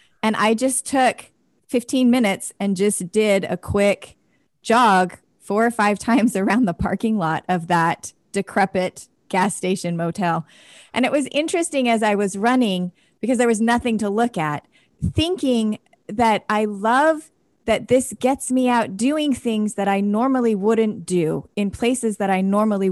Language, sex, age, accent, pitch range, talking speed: English, female, 20-39, American, 195-245 Hz, 160 wpm